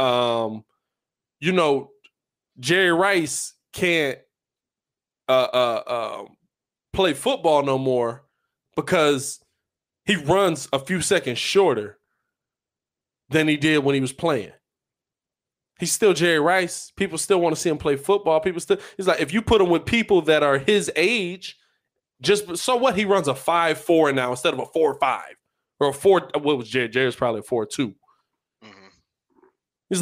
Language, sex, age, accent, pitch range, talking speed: English, male, 20-39, American, 135-180 Hz, 155 wpm